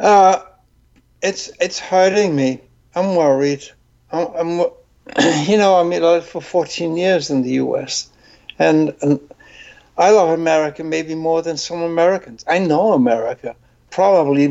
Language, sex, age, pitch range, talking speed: English, male, 60-79, 140-175 Hz, 135 wpm